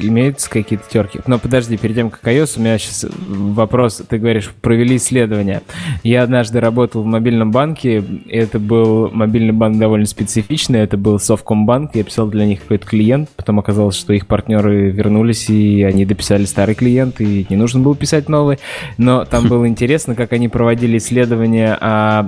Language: Russian